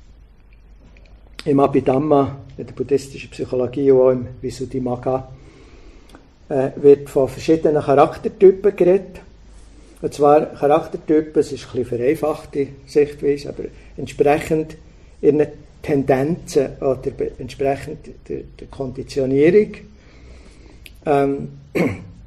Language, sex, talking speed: English, male, 90 wpm